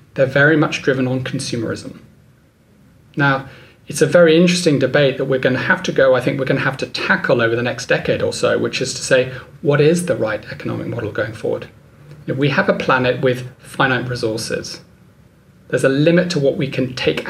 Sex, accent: male, British